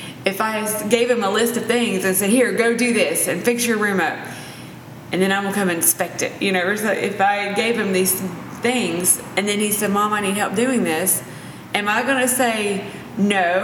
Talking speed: 215 wpm